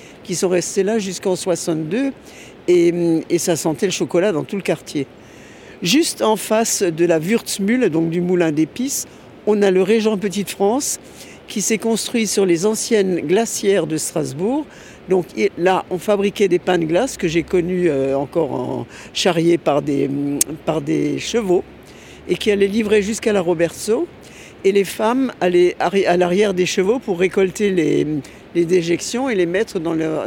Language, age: French, 60-79